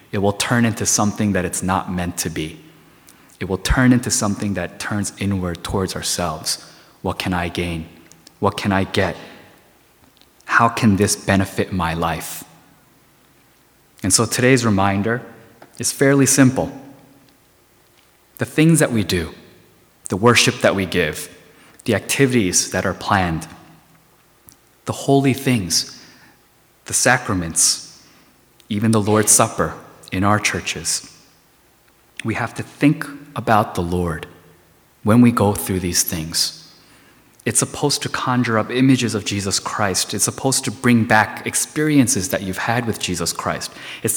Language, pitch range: Korean, 95-120 Hz